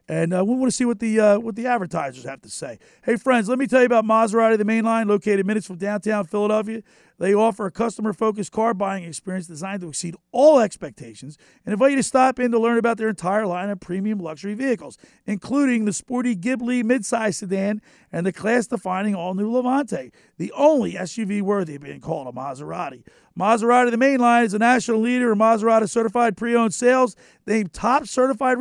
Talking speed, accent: 195 wpm, American